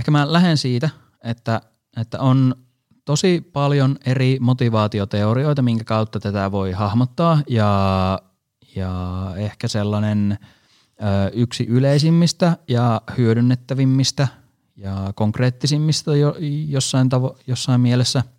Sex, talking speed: male, 100 wpm